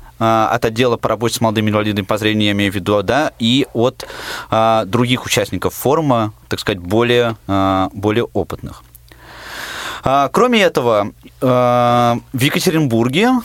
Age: 20-39